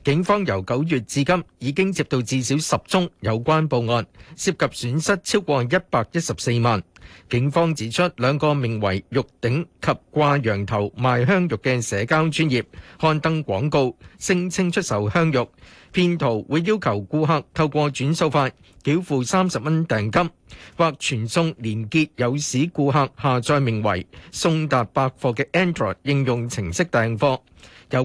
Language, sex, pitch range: Chinese, male, 120-165 Hz